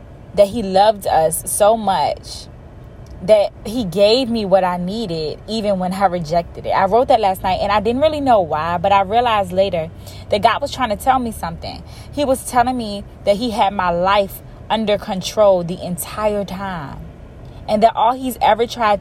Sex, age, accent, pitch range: female, 20-39, American, 175-220 Hz